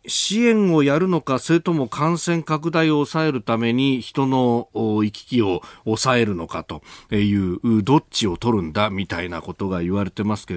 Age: 40-59